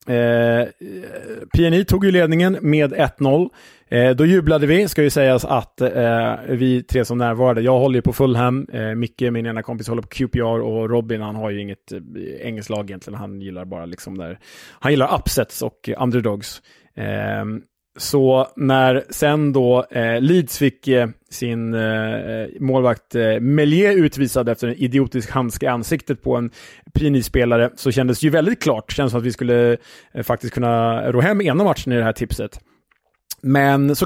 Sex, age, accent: male, 20-39, Norwegian